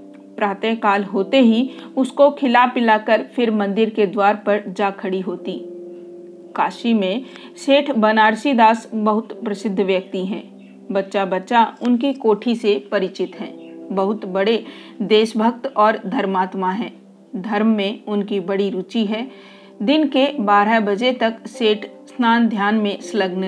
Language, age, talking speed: Hindi, 40-59, 135 wpm